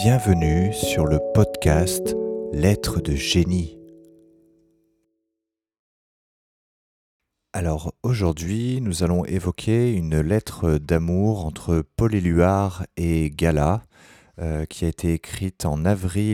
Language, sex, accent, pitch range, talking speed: French, male, French, 80-100 Hz, 95 wpm